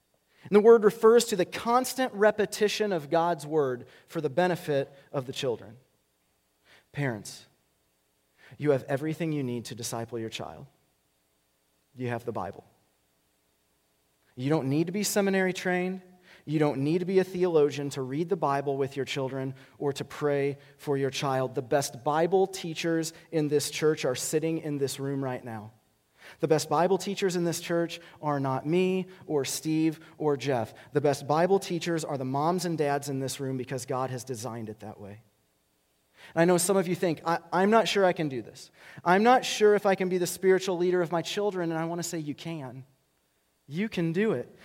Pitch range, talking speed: 130-185 Hz, 195 wpm